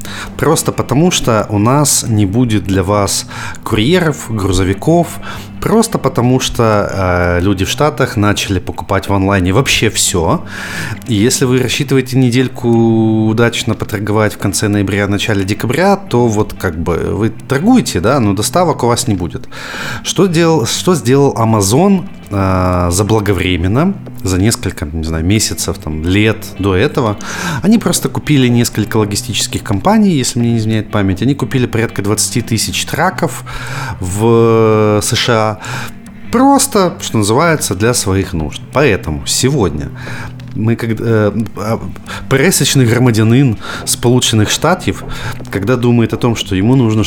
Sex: male